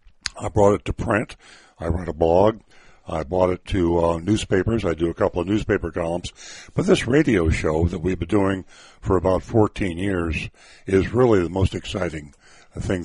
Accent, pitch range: American, 85-105 Hz